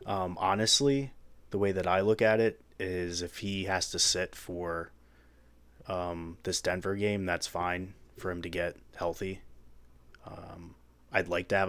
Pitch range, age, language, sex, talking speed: 85-100 Hz, 20-39, English, male, 165 wpm